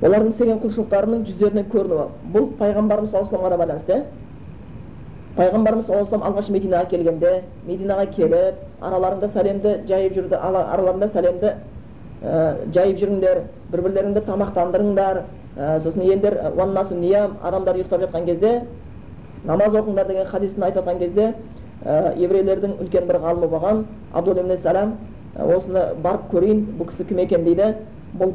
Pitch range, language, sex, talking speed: 175-205 Hz, Bulgarian, female, 90 wpm